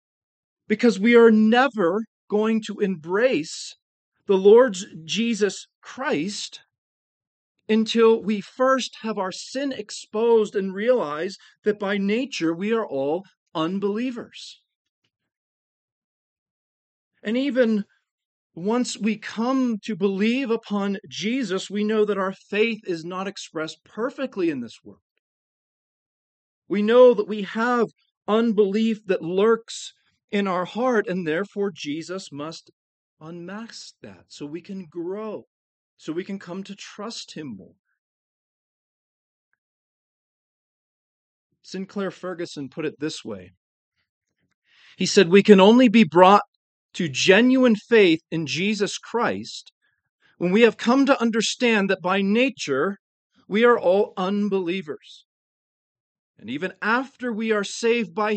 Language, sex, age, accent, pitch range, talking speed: English, male, 40-59, American, 185-230 Hz, 120 wpm